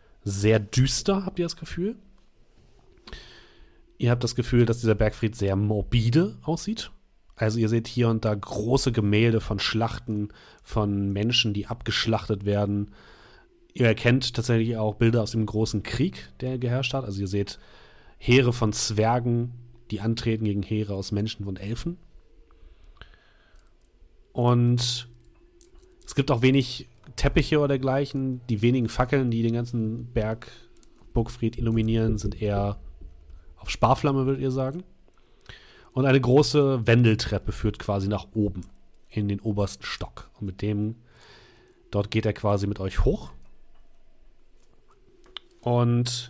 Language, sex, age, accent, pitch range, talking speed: German, male, 30-49, German, 105-130 Hz, 135 wpm